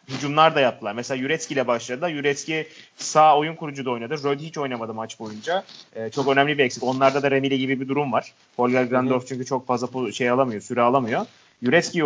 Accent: native